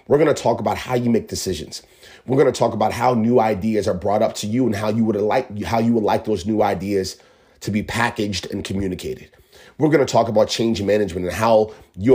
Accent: American